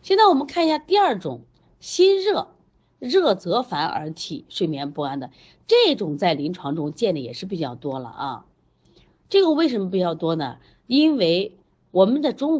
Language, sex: Chinese, female